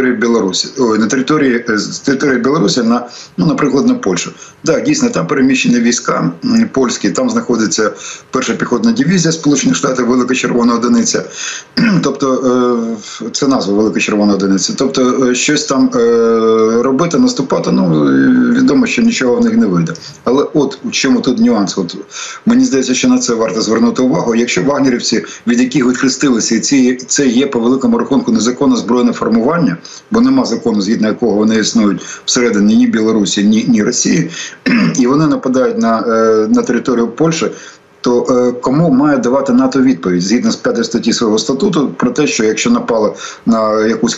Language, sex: Ukrainian, male